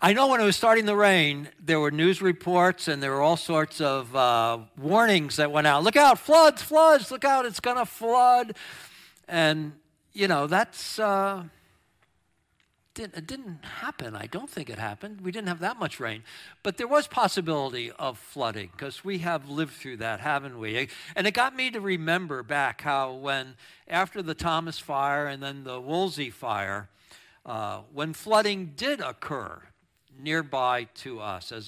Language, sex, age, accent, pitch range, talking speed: English, male, 60-79, American, 125-185 Hz, 180 wpm